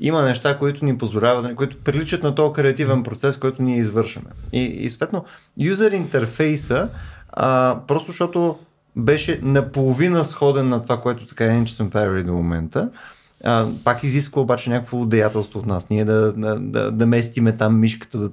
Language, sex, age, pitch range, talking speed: Bulgarian, male, 20-39, 110-150 Hz, 165 wpm